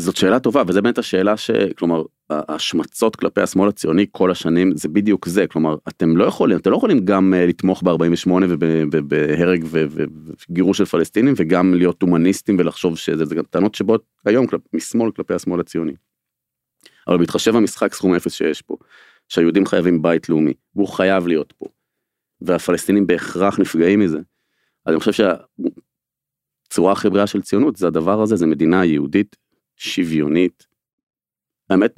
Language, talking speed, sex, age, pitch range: Hebrew, 145 wpm, male, 30-49, 80-95 Hz